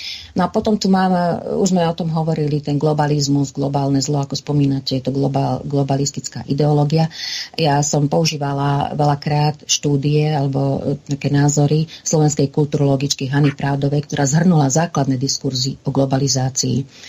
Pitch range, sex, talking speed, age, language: 135-160 Hz, female, 135 wpm, 40-59, Slovak